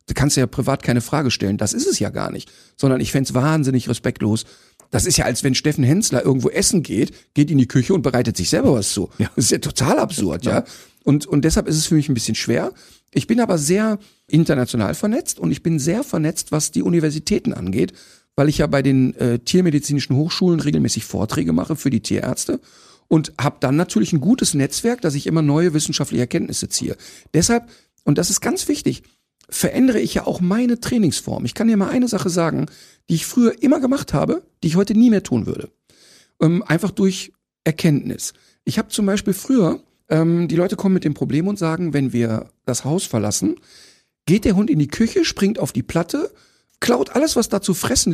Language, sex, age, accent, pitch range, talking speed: German, male, 50-69, German, 130-190 Hz, 210 wpm